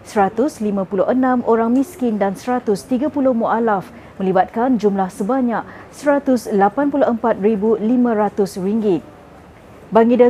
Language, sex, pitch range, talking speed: Malay, female, 205-250 Hz, 70 wpm